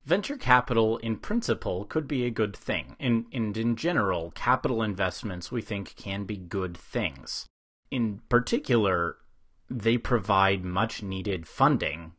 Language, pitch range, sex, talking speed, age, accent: English, 95-120 Hz, male, 130 wpm, 30-49, American